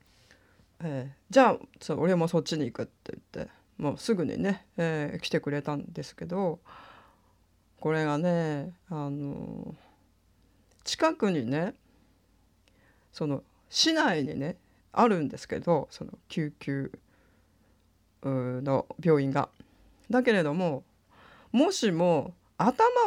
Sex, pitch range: female, 110-185 Hz